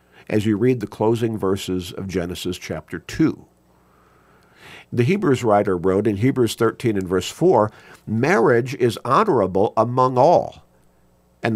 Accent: American